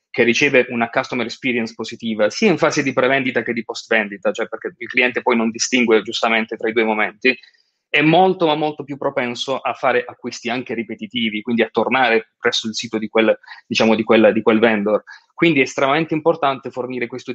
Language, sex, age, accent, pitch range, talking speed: Italian, male, 30-49, native, 120-155 Hz, 195 wpm